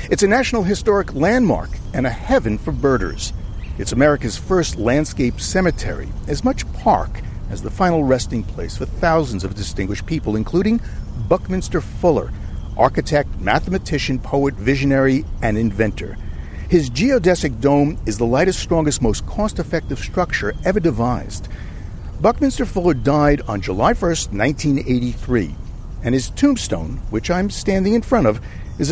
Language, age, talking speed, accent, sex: English, 50-69, 135 wpm, American, male